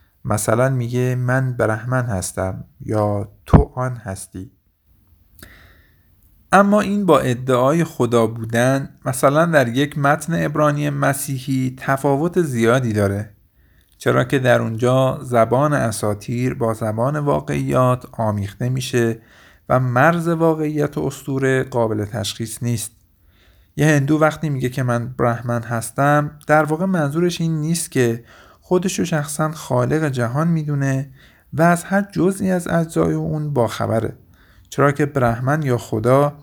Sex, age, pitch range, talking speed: male, 50-69, 110-145 Hz, 125 wpm